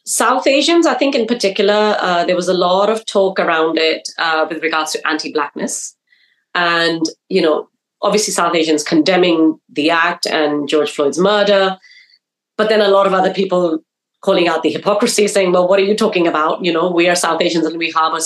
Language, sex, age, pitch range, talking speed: English, female, 30-49, 165-220 Hz, 200 wpm